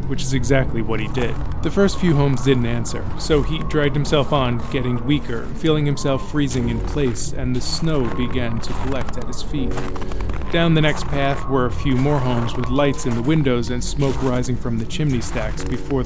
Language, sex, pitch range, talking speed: English, male, 120-145 Hz, 205 wpm